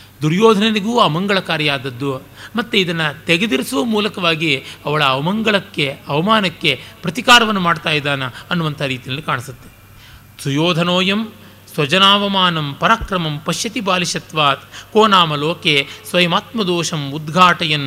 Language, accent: Kannada, native